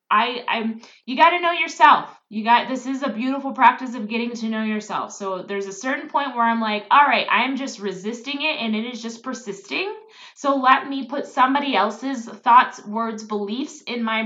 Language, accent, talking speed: English, American, 205 wpm